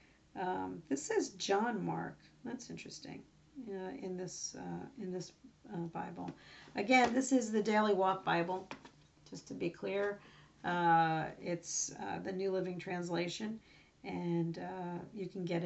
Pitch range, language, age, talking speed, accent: 165-205 Hz, English, 50-69, 145 wpm, American